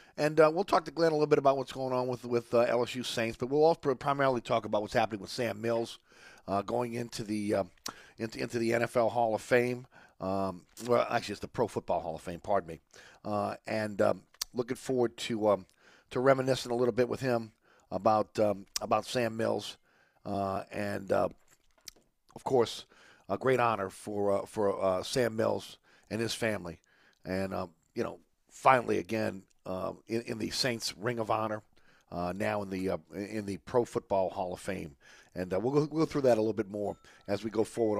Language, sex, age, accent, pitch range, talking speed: English, male, 40-59, American, 100-130 Hz, 205 wpm